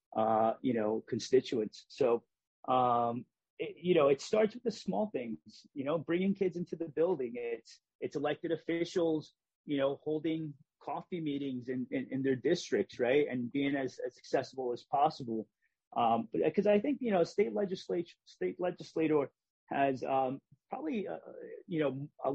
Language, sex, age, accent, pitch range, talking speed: English, male, 30-49, American, 130-190 Hz, 165 wpm